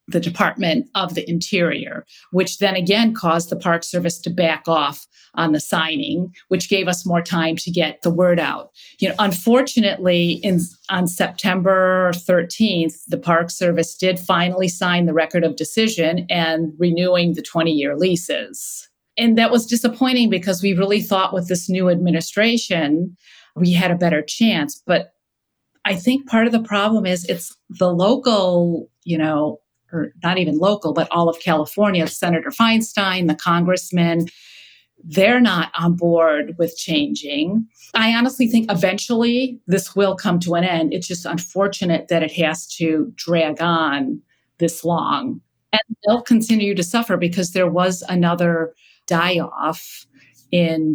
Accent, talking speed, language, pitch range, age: American, 155 wpm, English, 165-200 Hz, 50-69